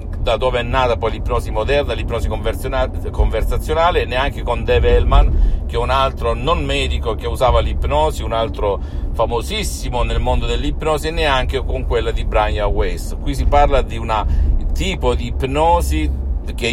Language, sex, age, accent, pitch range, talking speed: Italian, male, 50-69, native, 75-105 Hz, 160 wpm